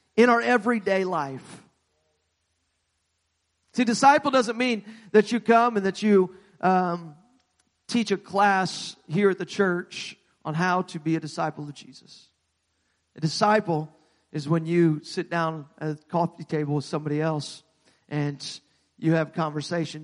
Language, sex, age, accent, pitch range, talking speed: English, male, 40-59, American, 150-180 Hz, 145 wpm